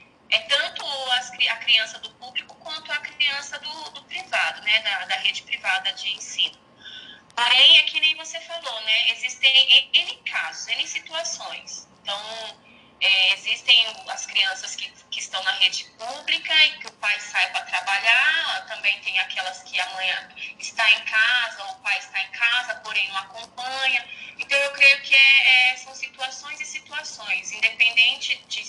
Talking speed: 165 wpm